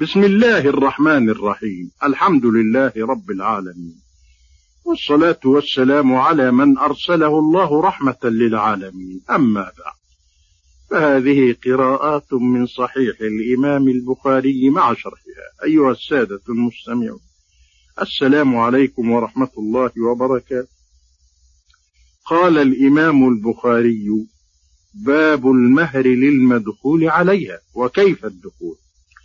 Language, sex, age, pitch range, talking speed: Arabic, male, 50-69, 110-150 Hz, 90 wpm